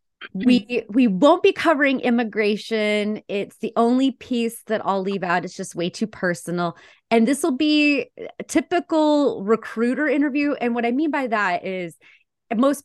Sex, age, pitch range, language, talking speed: female, 30-49, 170-230 Hz, English, 165 wpm